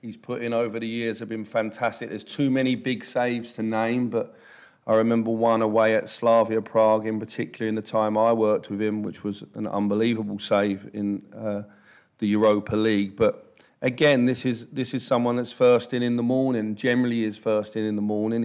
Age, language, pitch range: 40-59, English, 105-120 Hz